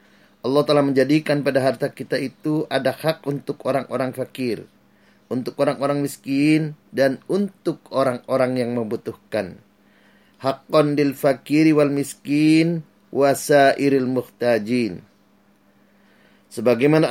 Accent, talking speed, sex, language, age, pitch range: native, 100 wpm, male, Indonesian, 30-49, 130-150 Hz